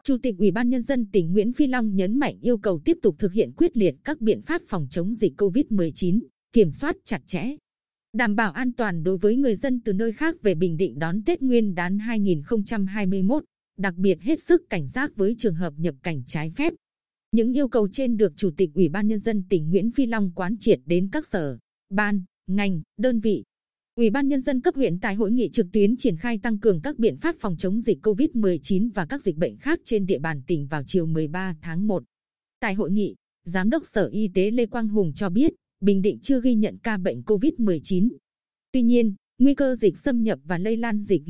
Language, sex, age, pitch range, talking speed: Vietnamese, female, 20-39, 190-240 Hz, 225 wpm